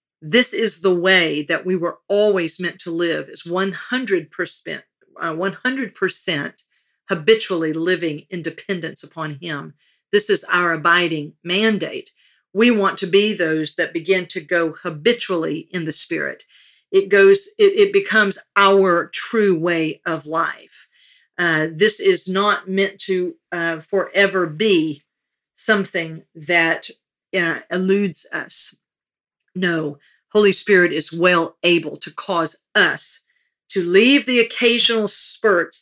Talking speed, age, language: 130 wpm, 50-69, English